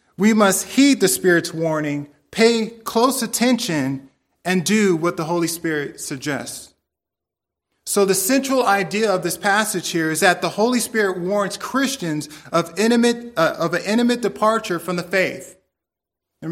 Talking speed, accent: 155 wpm, American